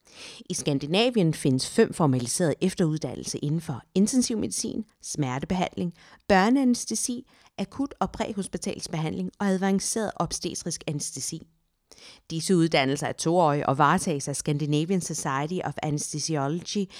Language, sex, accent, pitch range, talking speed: Danish, female, native, 145-185 Hz, 100 wpm